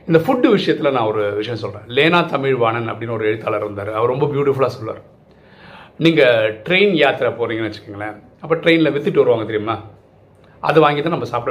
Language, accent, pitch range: Tamil, native, 120-170 Hz